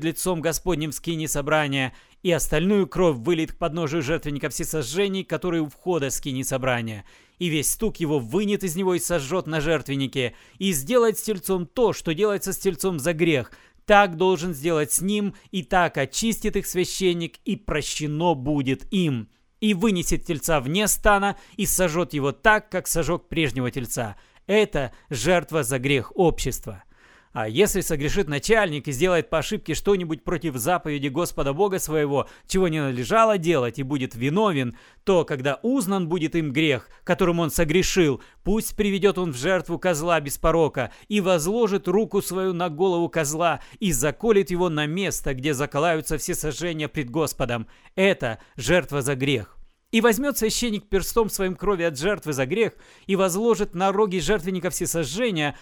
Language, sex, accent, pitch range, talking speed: Russian, male, native, 150-190 Hz, 160 wpm